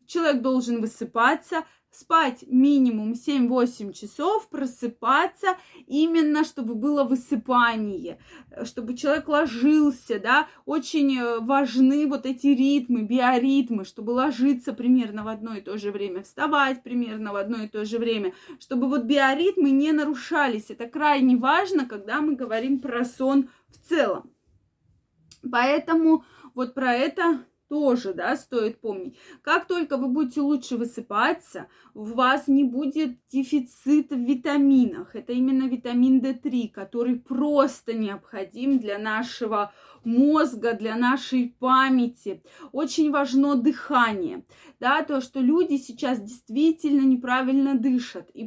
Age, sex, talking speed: 20-39, female, 125 wpm